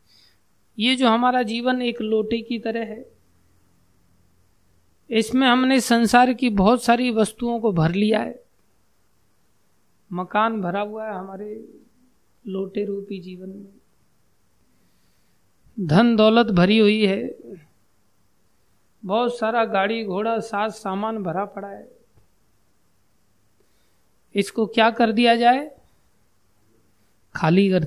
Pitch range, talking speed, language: 165-220 Hz, 110 wpm, Hindi